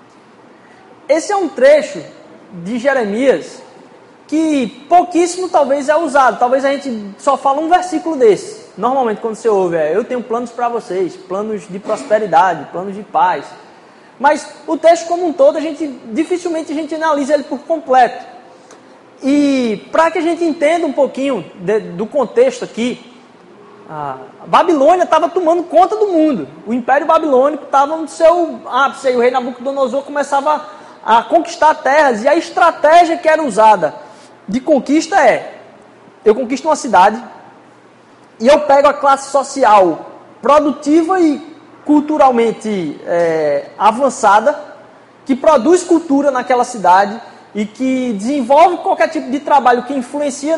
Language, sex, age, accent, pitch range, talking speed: Portuguese, male, 20-39, Brazilian, 245-315 Hz, 145 wpm